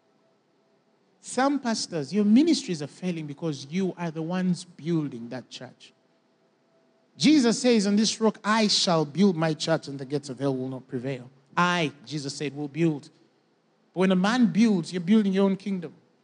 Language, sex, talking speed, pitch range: English, male, 175 wpm, 150-205 Hz